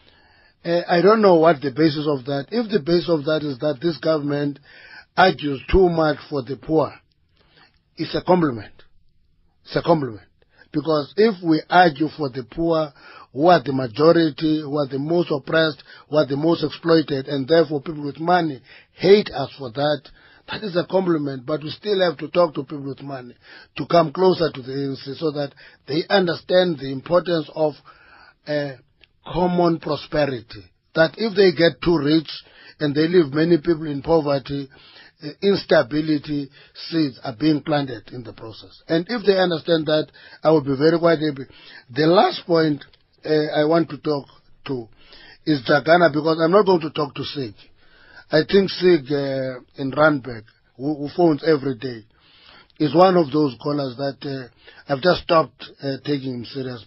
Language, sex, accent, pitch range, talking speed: English, male, South African, 140-165 Hz, 175 wpm